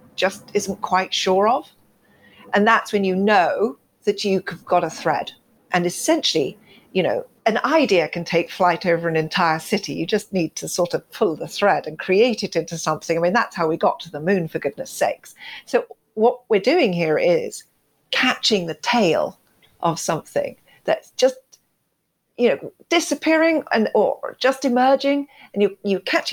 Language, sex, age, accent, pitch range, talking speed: English, female, 50-69, British, 175-265 Hz, 180 wpm